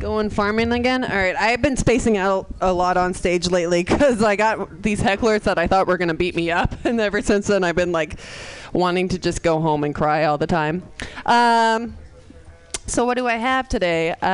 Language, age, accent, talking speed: English, 20-39, American, 220 wpm